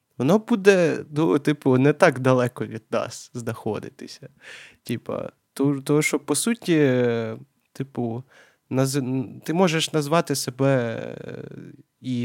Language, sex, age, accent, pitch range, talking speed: Ukrainian, male, 20-39, native, 115-140 Hz, 110 wpm